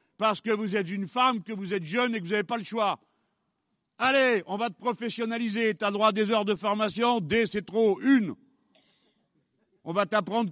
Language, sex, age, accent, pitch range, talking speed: French, male, 60-79, French, 205-255 Hz, 210 wpm